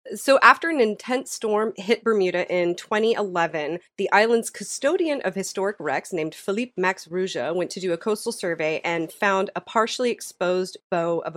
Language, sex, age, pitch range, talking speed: English, female, 30-49, 175-220 Hz, 170 wpm